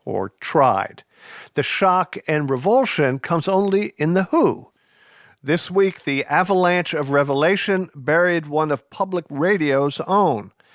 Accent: American